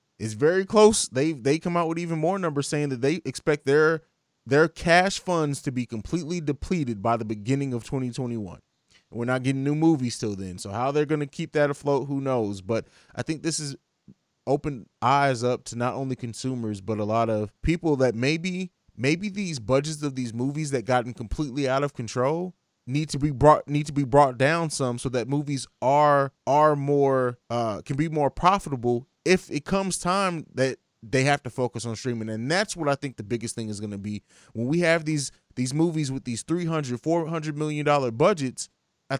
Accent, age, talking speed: American, 20-39, 205 wpm